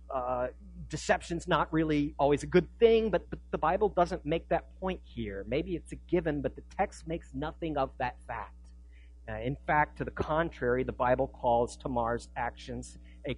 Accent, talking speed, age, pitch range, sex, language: American, 185 wpm, 50-69, 125-175 Hz, male, English